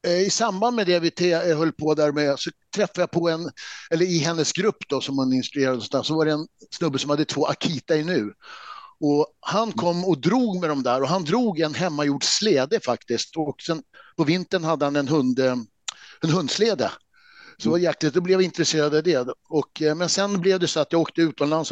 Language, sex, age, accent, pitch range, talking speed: English, male, 60-79, Swedish, 135-175 Hz, 215 wpm